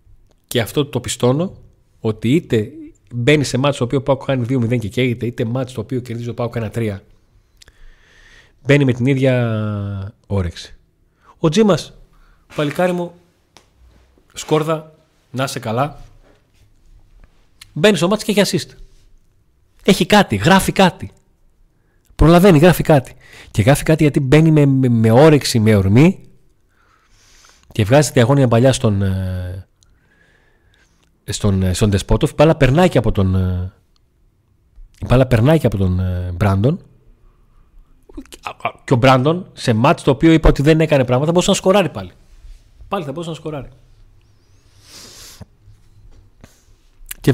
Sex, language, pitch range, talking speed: male, Greek, 105-155 Hz, 125 wpm